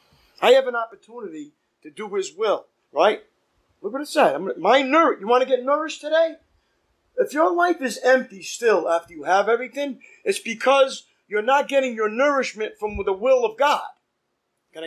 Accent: American